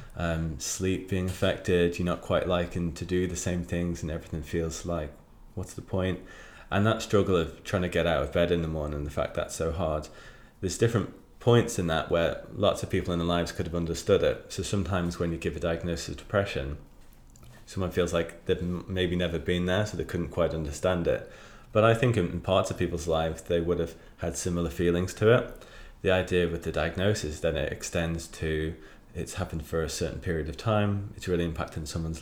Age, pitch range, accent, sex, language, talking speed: 20-39, 80-95 Hz, British, male, English, 215 wpm